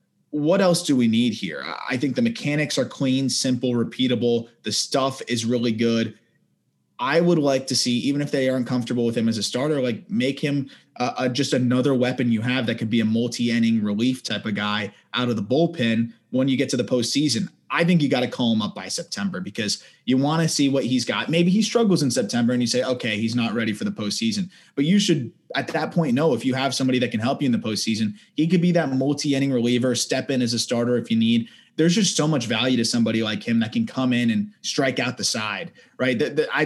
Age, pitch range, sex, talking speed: 20-39, 120-165 Hz, male, 240 wpm